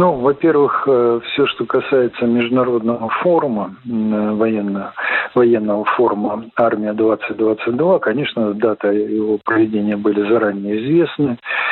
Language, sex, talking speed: Russian, male, 90 wpm